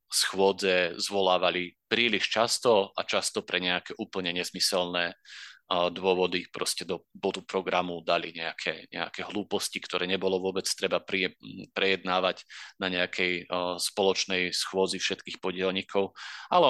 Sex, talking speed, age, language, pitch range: male, 110 wpm, 30-49, Slovak, 90-100 Hz